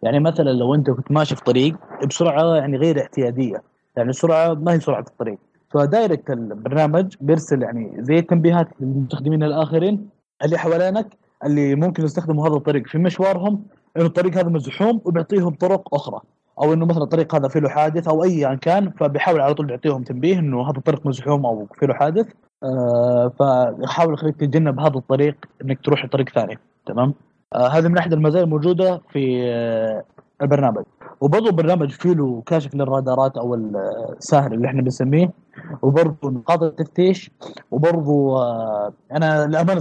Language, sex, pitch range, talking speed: Arabic, male, 130-165 Hz, 155 wpm